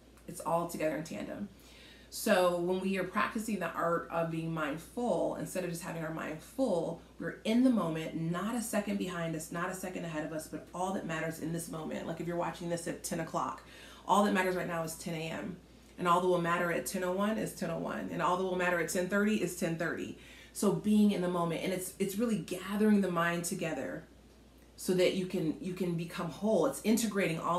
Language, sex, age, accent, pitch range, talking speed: English, female, 30-49, American, 170-195 Hz, 220 wpm